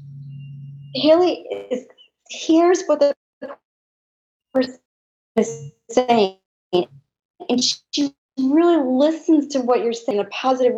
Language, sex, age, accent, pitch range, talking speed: English, male, 40-59, American, 220-310 Hz, 100 wpm